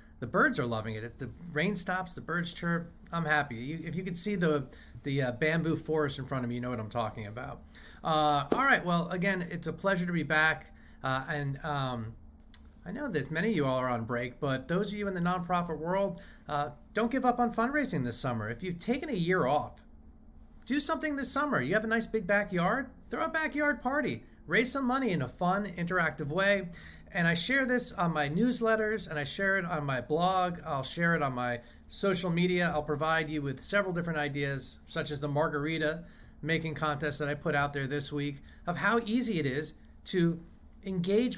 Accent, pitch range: American, 145-195 Hz